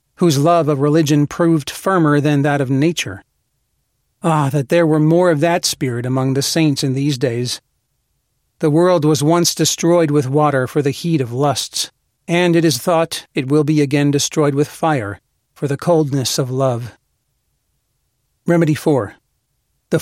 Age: 40-59